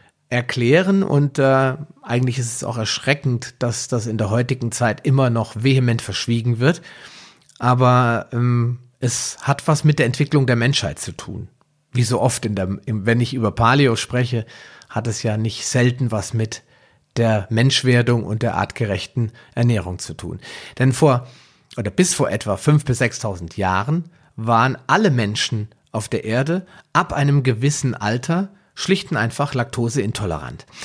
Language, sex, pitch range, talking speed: German, male, 115-140 Hz, 160 wpm